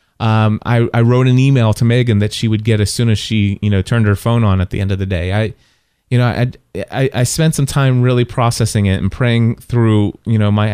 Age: 30-49